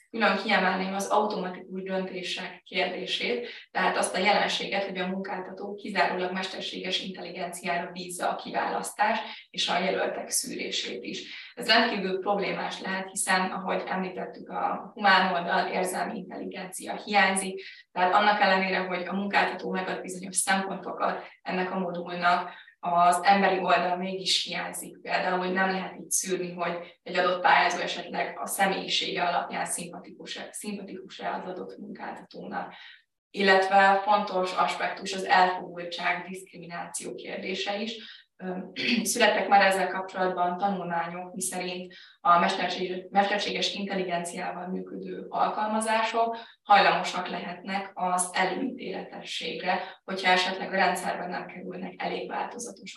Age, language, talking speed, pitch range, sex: 20-39, Hungarian, 120 wpm, 180-200 Hz, female